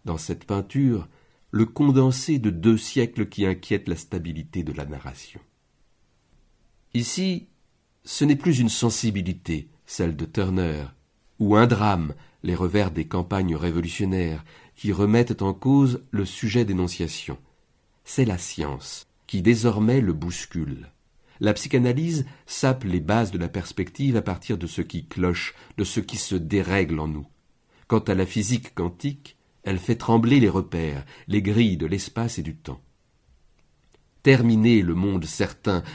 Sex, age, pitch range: male, 50-69, 90-120 Hz